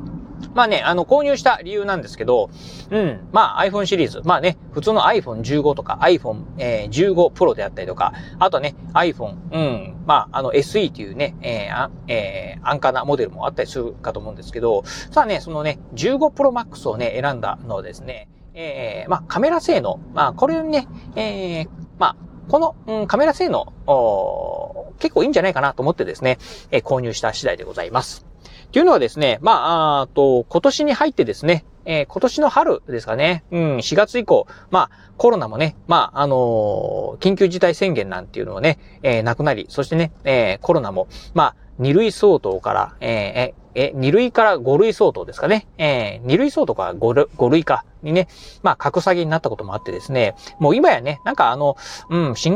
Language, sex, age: Japanese, male, 40-59